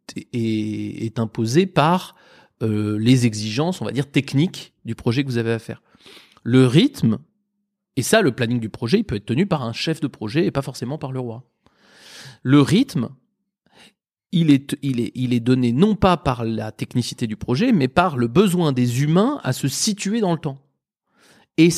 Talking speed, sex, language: 195 wpm, male, French